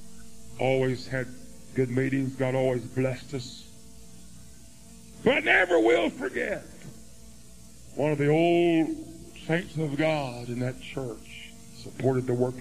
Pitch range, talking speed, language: 115-155 Hz, 125 wpm, English